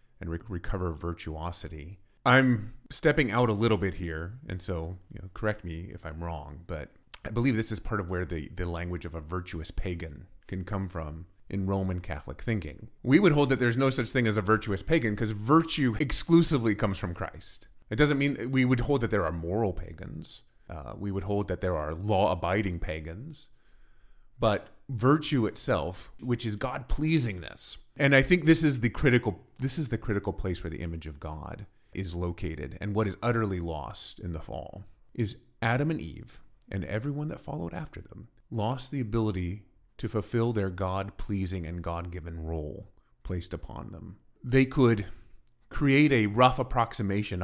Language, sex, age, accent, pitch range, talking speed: English, male, 30-49, American, 90-125 Hz, 180 wpm